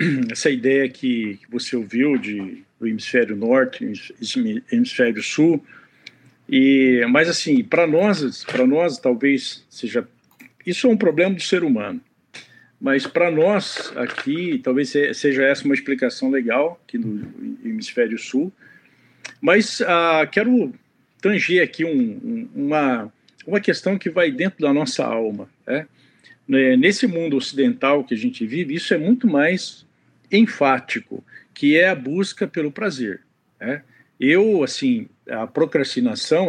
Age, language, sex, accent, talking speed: 50-69, Portuguese, male, Brazilian, 130 wpm